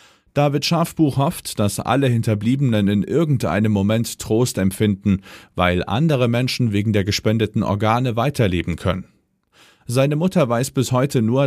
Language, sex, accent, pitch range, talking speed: German, male, German, 100-130 Hz, 135 wpm